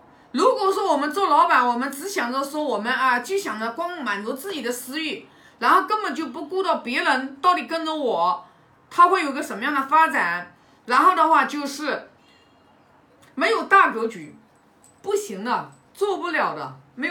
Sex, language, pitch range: female, Chinese, 240-320 Hz